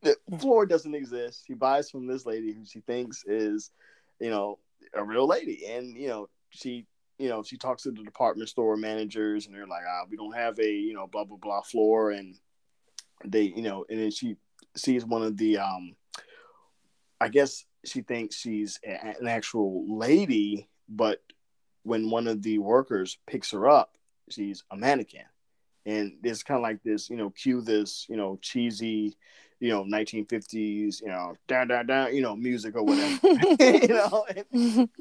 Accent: American